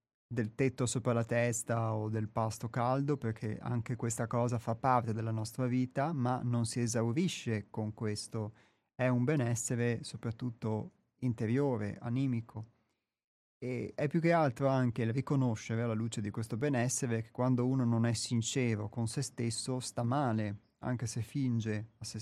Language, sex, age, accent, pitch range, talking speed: Italian, male, 30-49, native, 115-130 Hz, 160 wpm